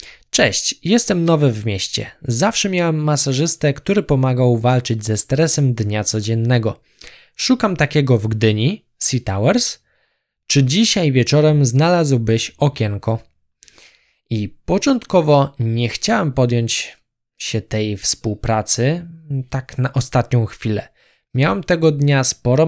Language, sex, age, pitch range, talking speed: Polish, male, 20-39, 115-155 Hz, 110 wpm